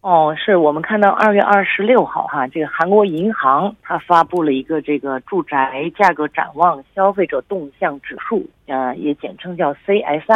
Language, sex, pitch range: Korean, female, 150-200 Hz